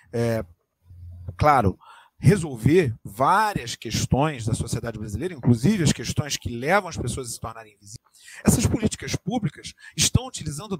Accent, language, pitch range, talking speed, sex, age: Brazilian, Portuguese, 120-175 Hz, 135 wpm, male, 40-59